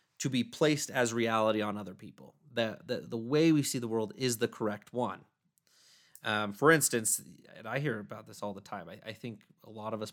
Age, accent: 30-49, American